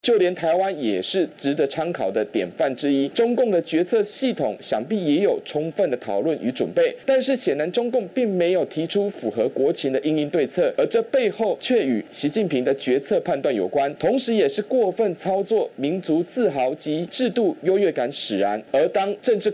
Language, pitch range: Chinese, 150-220 Hz